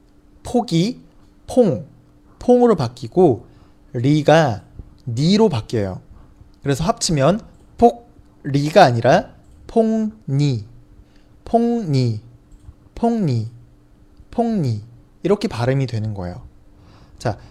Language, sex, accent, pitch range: Chinese, male, Korean, 110-170 Hz